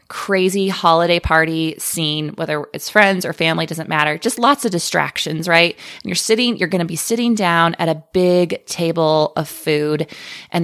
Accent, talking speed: American, 180 wpm